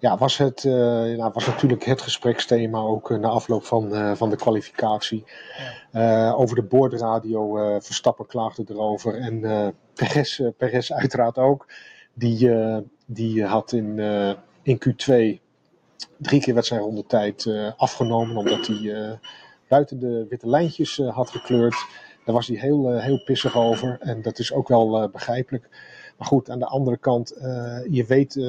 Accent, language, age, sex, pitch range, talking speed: Dutch, Dutch, 40-59, male, 110-130 Hz, 170 wpm